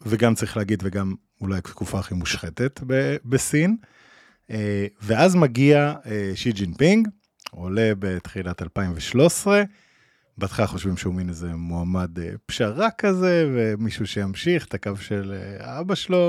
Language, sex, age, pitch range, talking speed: Hebrew, male, 20-39, 100-155 Hz, 115 wpm